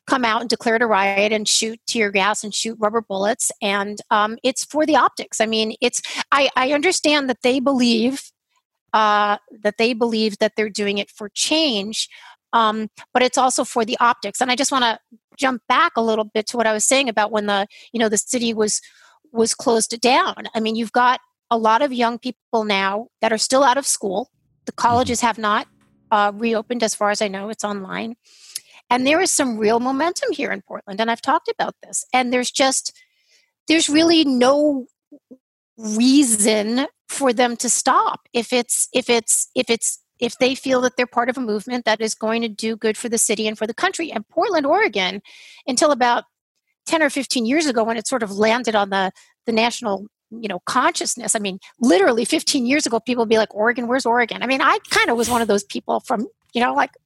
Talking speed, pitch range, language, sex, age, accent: 210 wpm, 220-265 Hz, English, female, 40-59, American